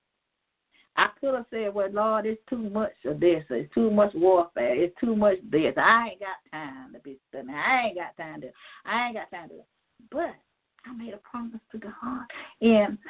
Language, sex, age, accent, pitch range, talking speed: English, female, 40-59, American, 205-270 Hz, 200 wpm